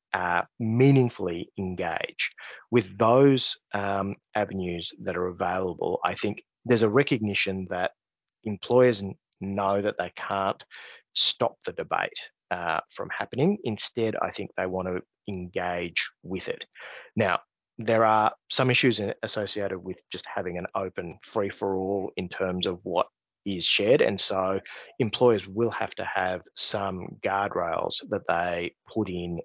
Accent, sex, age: Australian, male, 20-39